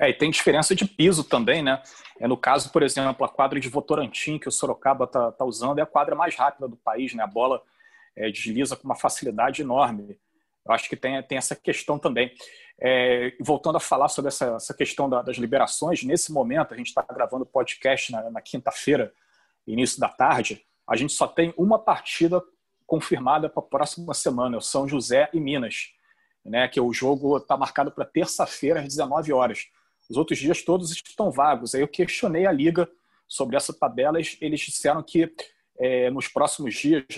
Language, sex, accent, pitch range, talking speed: Portuguese, male, Brazilian, 130-175 Hz, 190 wpm